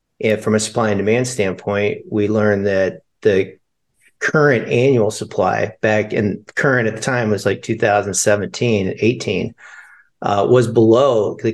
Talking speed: 145 wpm